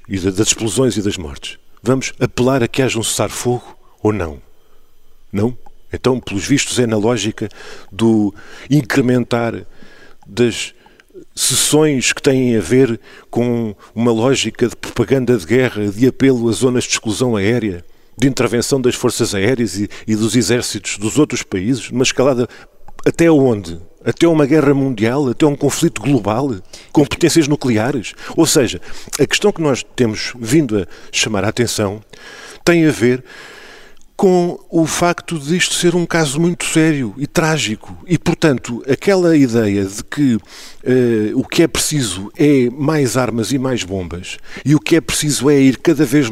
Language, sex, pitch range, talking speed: Portuguese, male, 110-145 Hz, 160 wpm